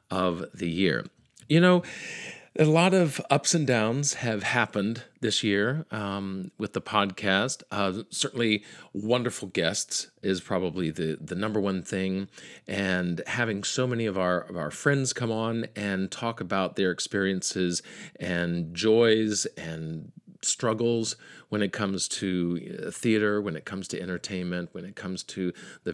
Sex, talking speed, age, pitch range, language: male, 150 wpm, 40-59, 90-115 Hz, English